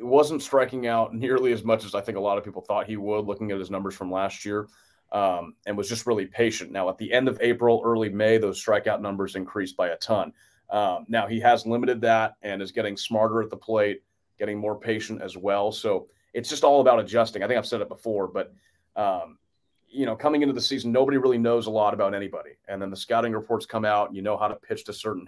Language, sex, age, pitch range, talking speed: English, male, 30-49, 100-120 Hz, 245 wpm